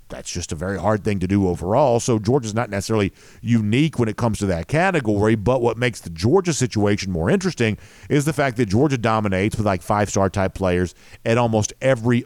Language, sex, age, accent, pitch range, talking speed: English, male, 50-69, American, 95-125 Hz, 205 wpm